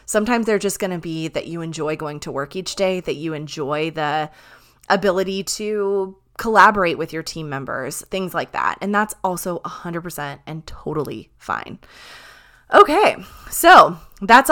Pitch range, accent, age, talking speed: 165-215 Hz, American, 20-39, 155 wpm